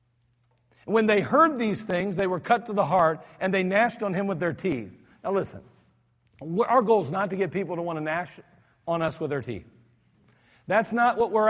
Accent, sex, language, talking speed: American, male, English, 215 wpm